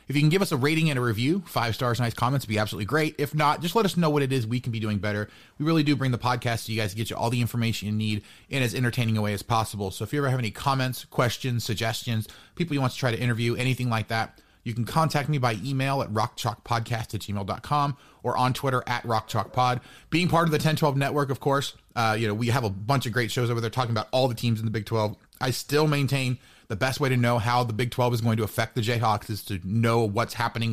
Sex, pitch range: male, 115-145 Hz